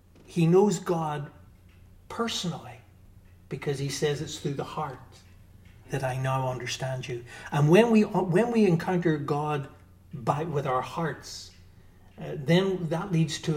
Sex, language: male, English